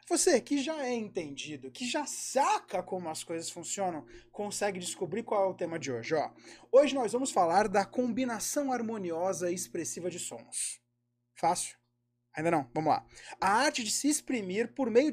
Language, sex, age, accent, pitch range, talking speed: Portuguese, male, 20-39, Brazilian, 180-255 Hz, 175 wpm